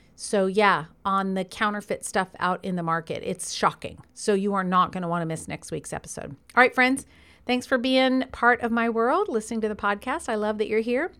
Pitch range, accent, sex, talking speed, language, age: 195-265 Hz, American, female, 220 wpm, English, 40-59